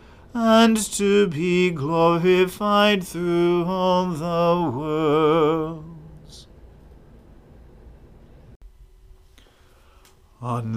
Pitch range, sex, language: 165-175 Hz, male, English